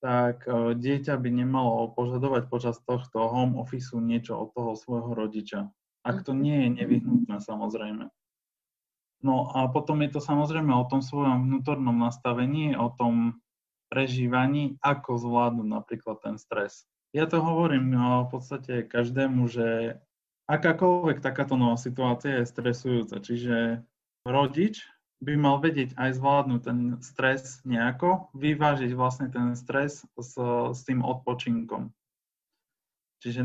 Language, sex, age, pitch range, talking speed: Slovak, male, 20-39, 120-140 Hz, 130 wpm